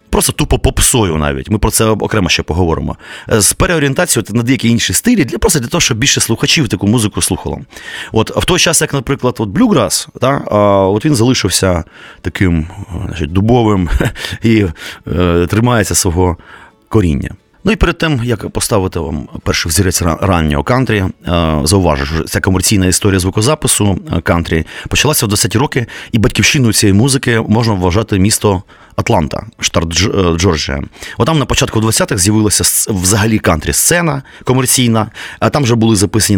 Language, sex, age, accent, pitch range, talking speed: Ukrainian, male, 30-49, native, 95-125 Hz, 155 wpm